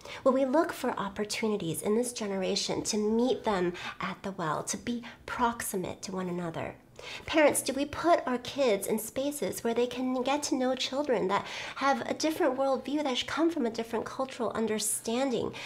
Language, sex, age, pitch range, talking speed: English, female, 30-49, 200-260 Hz, 180 wpm